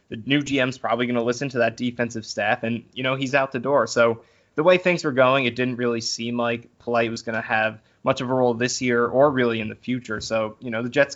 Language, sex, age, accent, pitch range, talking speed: English, male, 20-39, American, 115-130 Hz, 270 wpm